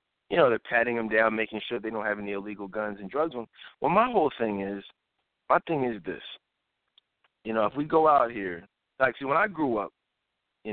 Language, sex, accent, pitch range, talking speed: English, male, American, 110-130 Hz, 225 wpm